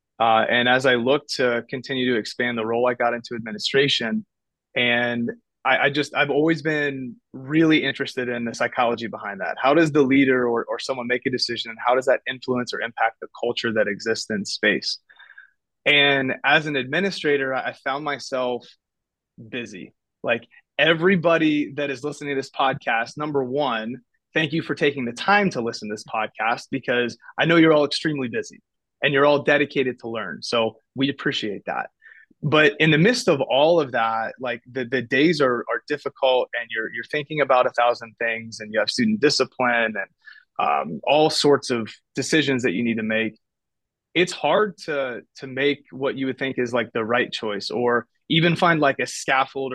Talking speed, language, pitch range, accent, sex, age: 190 wpm, English, 120-150 Hz, American, male, 30-49